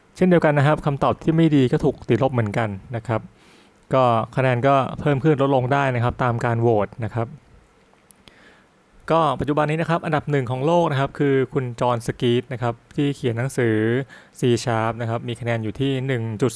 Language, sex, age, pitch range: Thai, male, 20-39, 115-140 Hz